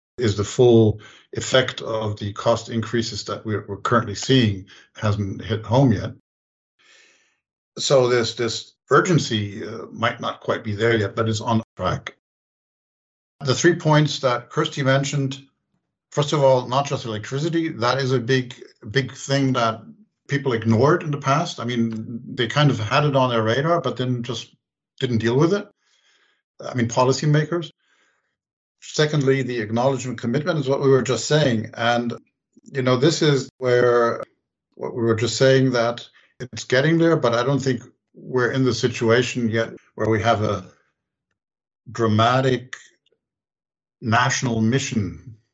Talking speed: 155 wpm